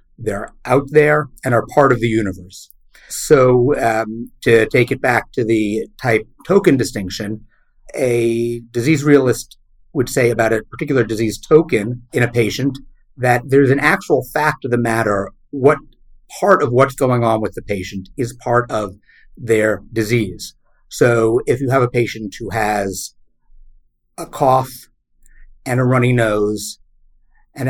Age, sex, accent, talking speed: 50-69, male, American, 150 wpm